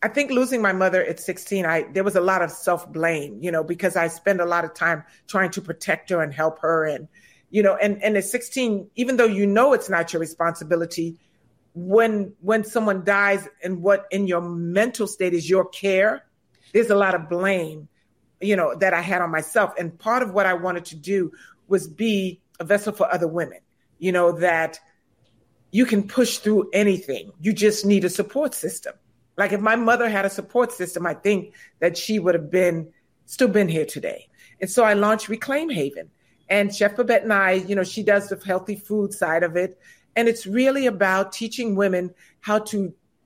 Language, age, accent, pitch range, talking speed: English, 50-69, American, 175-225 Hz, 205 wpm